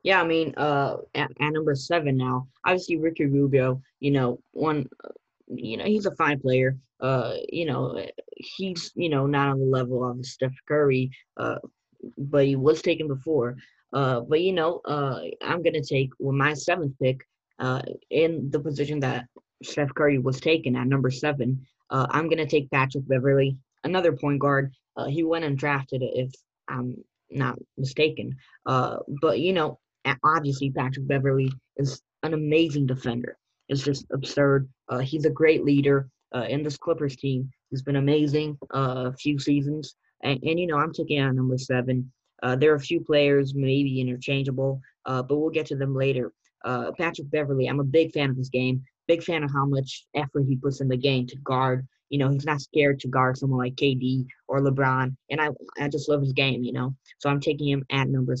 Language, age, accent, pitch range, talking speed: English, 10-29, American, 130-150 Hz, 200 wpm